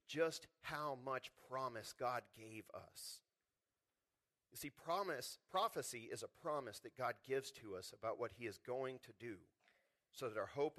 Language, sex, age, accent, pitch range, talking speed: English, male, 40-59, American, 125-170 Hz, 165 wpm